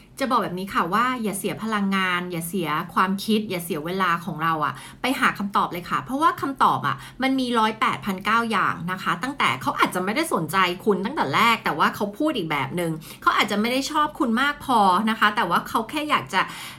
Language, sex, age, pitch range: Thai, female, 20-39, 195-265 Hz